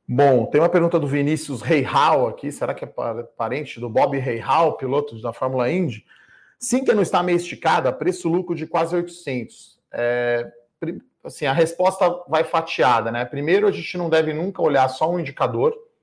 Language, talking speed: Portuguese, 170 wpm